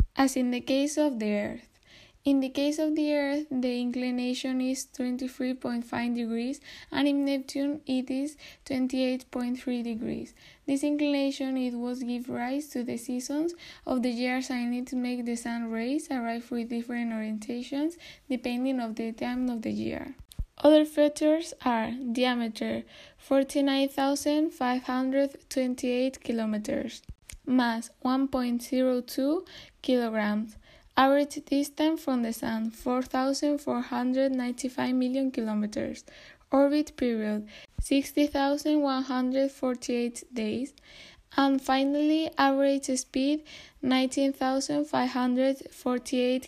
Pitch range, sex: 245-280 Hz, female